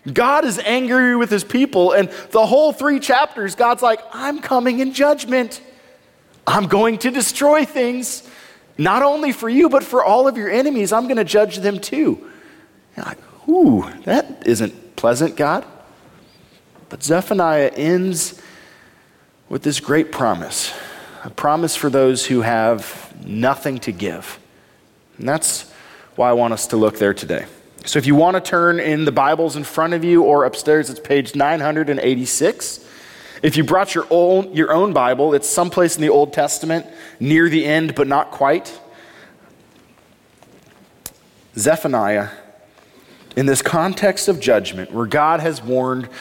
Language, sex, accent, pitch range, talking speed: English, male, American, 140-215 Hz, 155 wpm